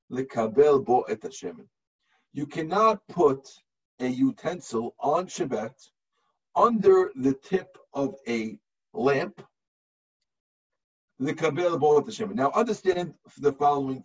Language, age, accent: English, 50-69, American